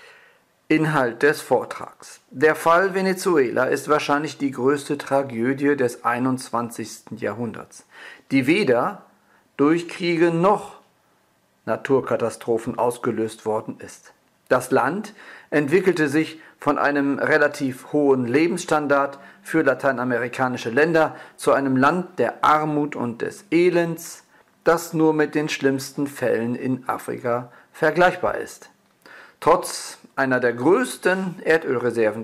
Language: German